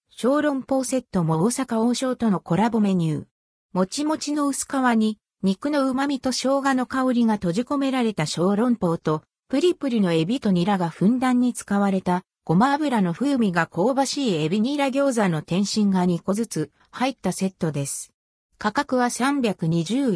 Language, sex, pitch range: Japanese, female, 180-270 Hz